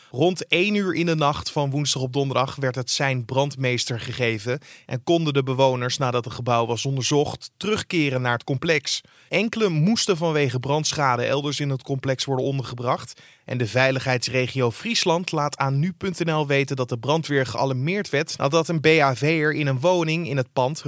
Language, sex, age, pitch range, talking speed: Dutch, male, 20-39, 125-165 Hz, 170 wpm